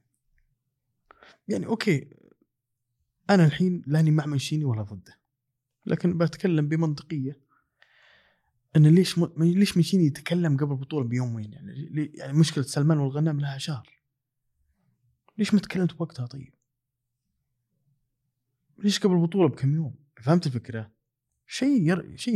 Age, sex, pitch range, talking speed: 20-39, male, 125-160 Hz, 110 wpm